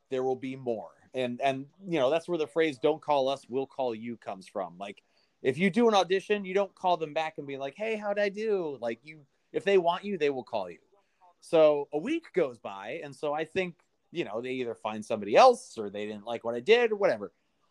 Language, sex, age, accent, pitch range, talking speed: English, male, 30-49, American, 125-175 Hz, 245 wpm